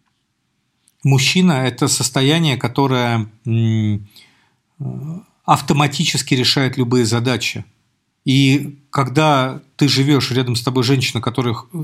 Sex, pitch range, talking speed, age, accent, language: male, 125-150 Hz, 90 wpm, 40-59, native, Russian